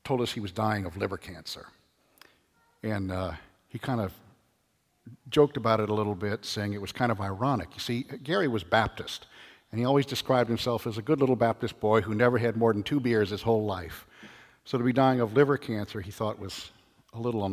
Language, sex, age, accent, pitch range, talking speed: English, male, 50-69, American, 105-135 Hz, 220 wpm